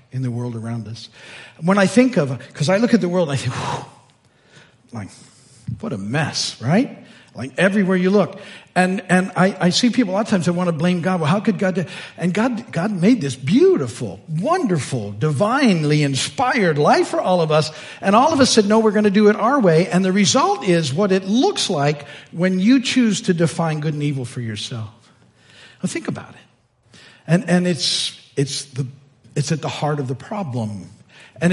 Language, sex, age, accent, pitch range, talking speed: English, male, 50-69, American, 150-225 Hz, 210 wpm